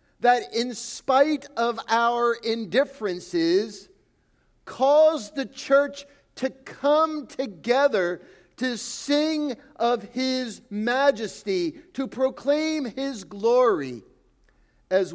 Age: 50-69